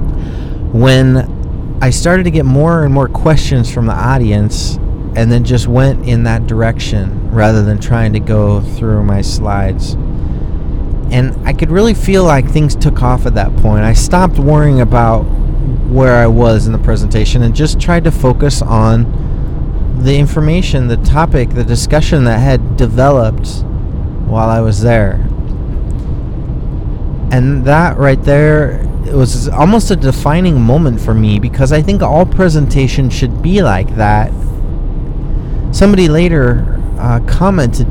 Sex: male